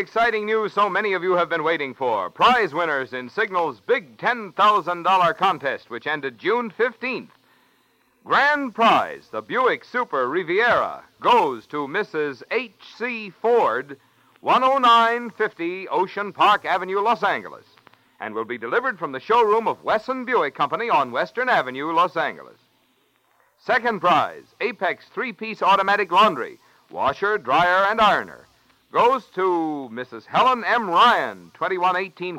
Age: 60-79